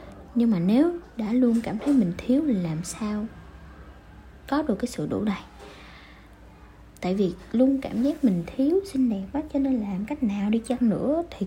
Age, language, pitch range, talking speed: 20-39, Vietnamese, 185-255 Hz, 195 wpm